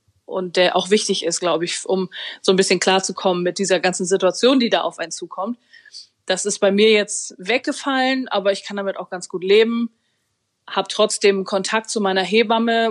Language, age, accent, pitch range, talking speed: German, 20-39, German, 185-210 Hz, 190 wpm